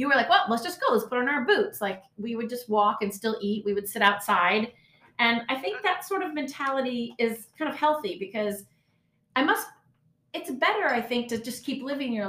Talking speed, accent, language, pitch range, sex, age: 230 wpm, American, English, 205-270 Hz, female, 30-49